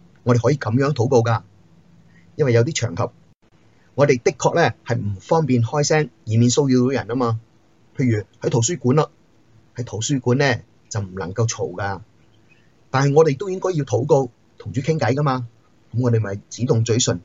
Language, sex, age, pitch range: Chinese, male, 30-49, 115-135 Hz